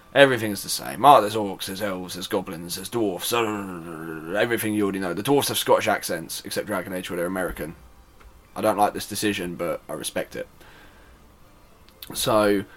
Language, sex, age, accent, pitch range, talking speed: English, male, 20-39, British, 90-105 Hz, 180 wpm